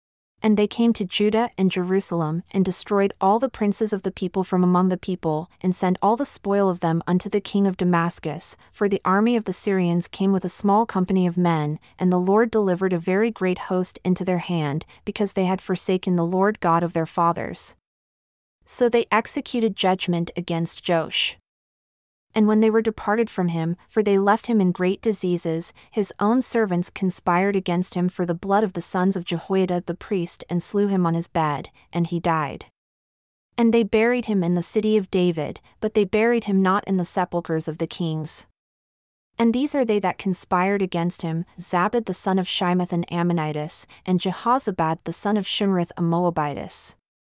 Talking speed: 195 wpm